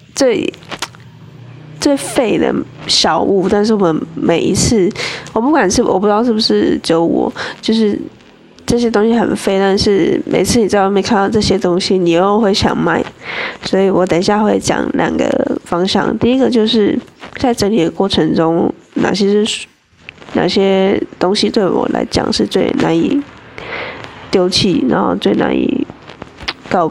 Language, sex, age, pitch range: Chinese, female, 10-29, 190-230 Hz